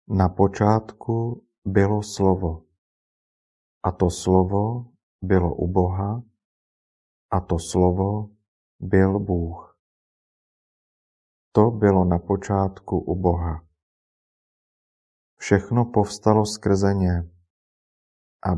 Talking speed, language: 85 wpm, Czech